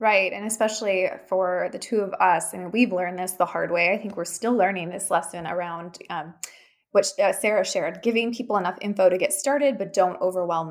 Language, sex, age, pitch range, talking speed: English, female, 20-39, 180-235 Hz, 225 wpm